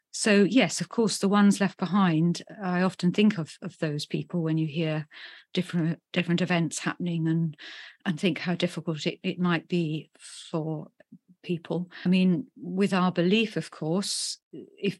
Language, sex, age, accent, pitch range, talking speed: English, female, 40-59, British, 165-190 Hz, 165 wpm